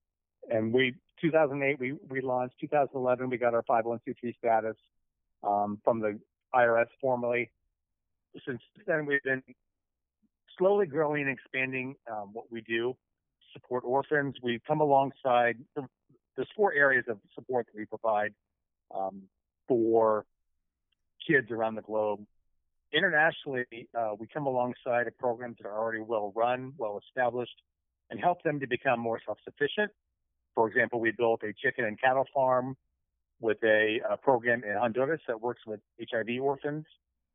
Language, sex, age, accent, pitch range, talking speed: English, male, 40-59, American, 105-135 Hz, 140 wpm